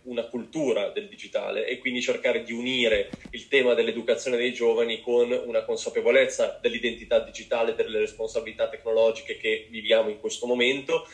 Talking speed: 150 wpm